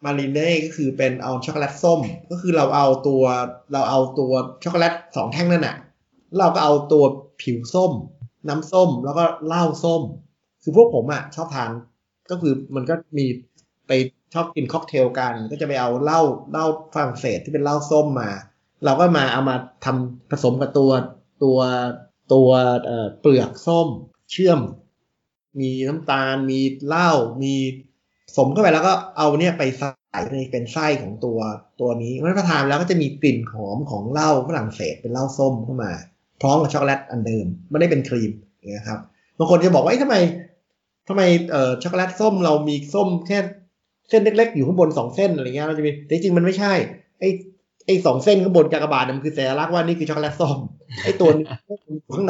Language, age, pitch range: Thai, 20-39, 130-170 Hz